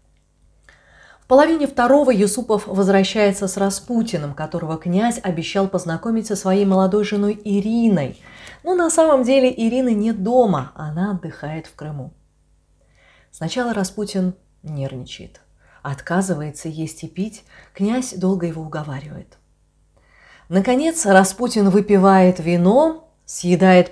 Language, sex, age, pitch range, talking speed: Russian, female, 30-49, 150-210 Hz, 110 wpm